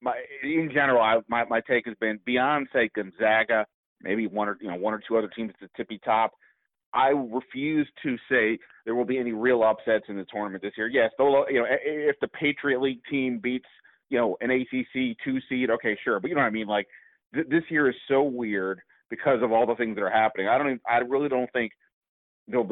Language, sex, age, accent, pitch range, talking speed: English, male, 30-49, American, 110-140 Hz, 235 wpm